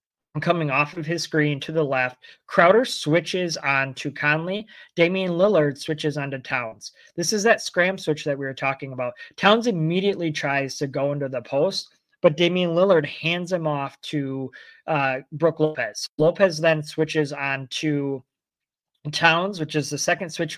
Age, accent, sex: 20-39, American, male